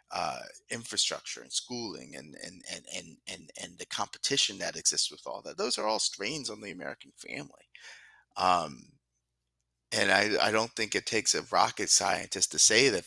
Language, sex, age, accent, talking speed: English, male, 30-49, American, 175 wpm